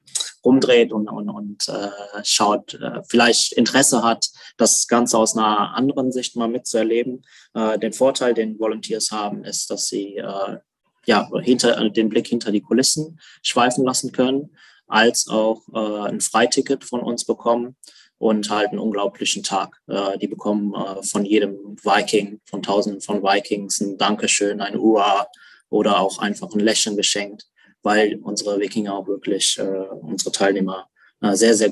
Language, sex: German, male